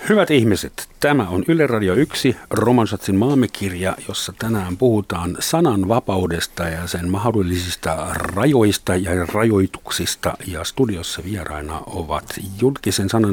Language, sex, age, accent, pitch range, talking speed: Finnish, male, 50-69, native, 90-125 Hz, 105 wpm